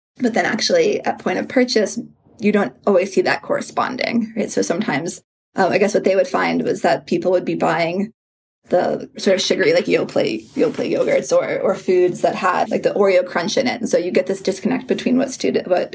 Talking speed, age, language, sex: 215 wpm, 20-39, English, female